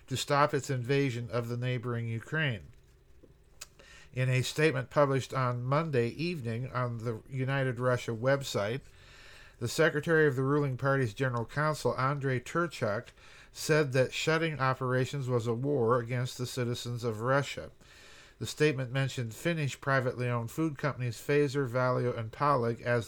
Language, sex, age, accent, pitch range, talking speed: English, male, 50-69, American, 120-140 Hz, 145 wpm